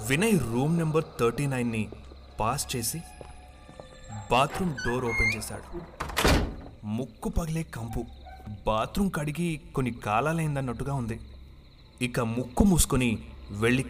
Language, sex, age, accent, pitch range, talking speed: Telugu, male, 30-49, native, 105-150 Hz, 100 wpm